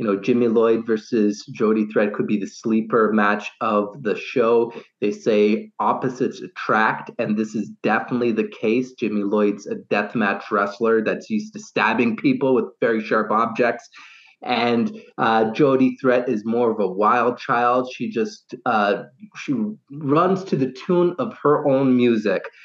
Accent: American